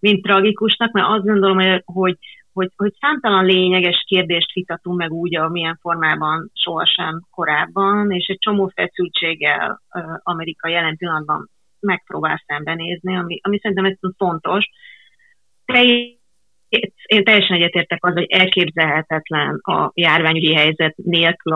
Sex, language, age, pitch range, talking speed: female, Hungarian, 30-49, 165-195 Hz, 115 wpm